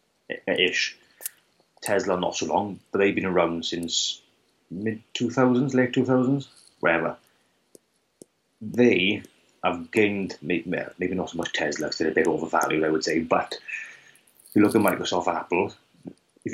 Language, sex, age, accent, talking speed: English, male, 30-49, British, 140 wpm